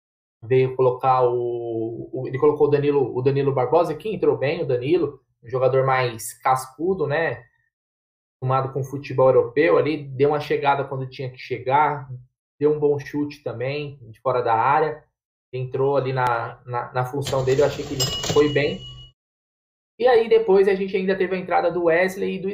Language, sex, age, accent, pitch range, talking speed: Portuguese, male, 20-39, Brazilian, 130-180 Hz, 180 wpm